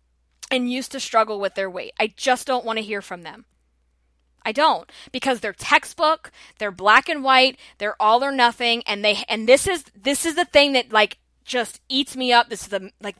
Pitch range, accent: 205-285 Hz, American